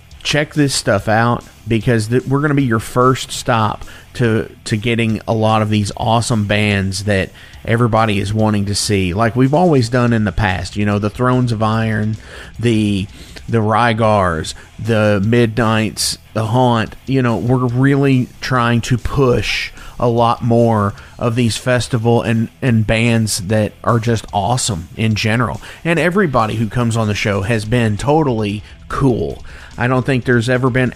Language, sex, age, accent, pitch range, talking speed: English, male, 30-49, American, 105-125 Hz, 170 wpm